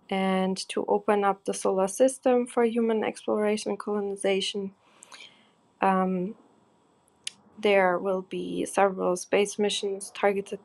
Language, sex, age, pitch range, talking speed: English, female, 20-39, 195-225 Hz, 115 wpm